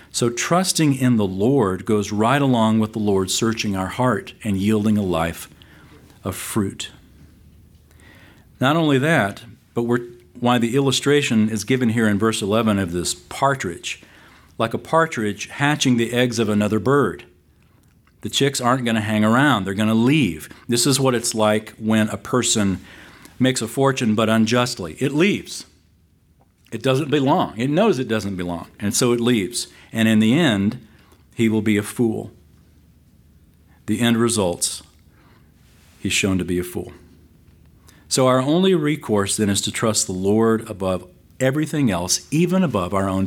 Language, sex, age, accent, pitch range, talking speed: English, male, 50-69, American, 90-125 Hz, 165 wpm